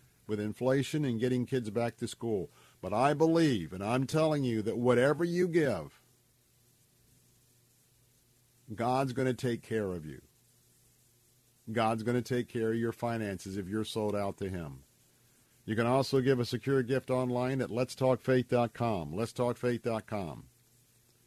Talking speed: 145 wpm